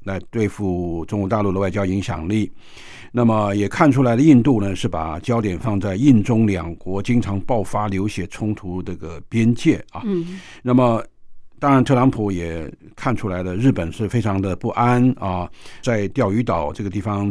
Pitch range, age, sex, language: 95-125 Hz, 50-69, male, Chinese